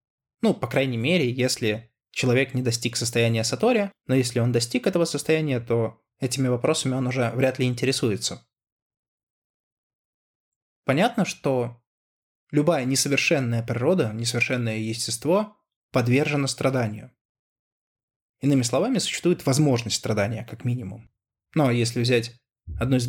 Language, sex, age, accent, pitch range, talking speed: Russian, male, 20-39, native, 120-145 Hz, 115 wpm